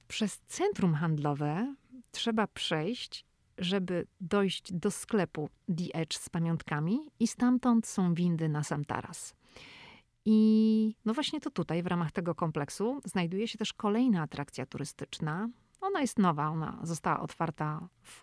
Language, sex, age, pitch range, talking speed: Polish, female, 40-59, 160-205 Hz, 140 wpm